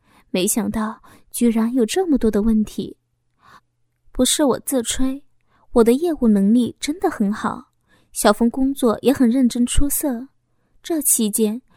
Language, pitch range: Chinese, 215-265 Hz